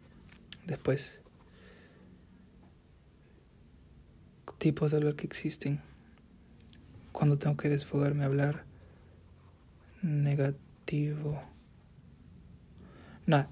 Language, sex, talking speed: Spanish, male, 60 wpm